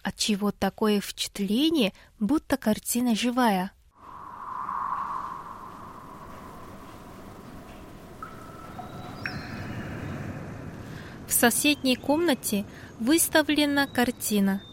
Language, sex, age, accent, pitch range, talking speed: Russian, female, 20-39, native, 200-265 Hz, 50 wpm